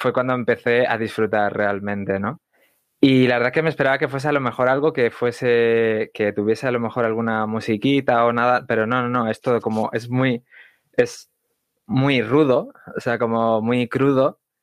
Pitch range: 110-125 Hz